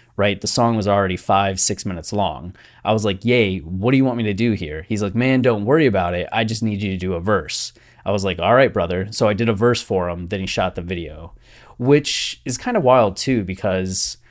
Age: 20-39